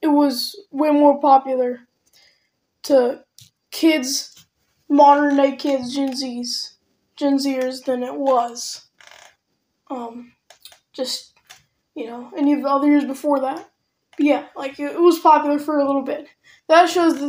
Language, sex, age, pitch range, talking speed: English, female, 10-29, 270-315 Hz, 135 wpm